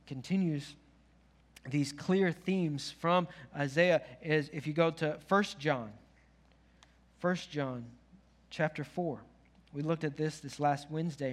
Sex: male